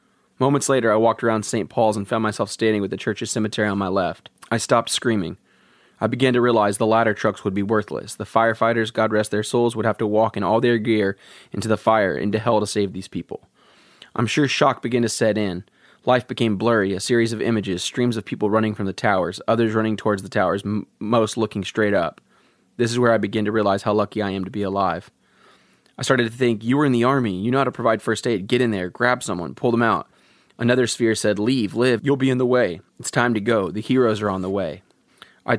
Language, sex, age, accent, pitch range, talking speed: English, male, 20-39, American, 105-120 Hz, 240 wpm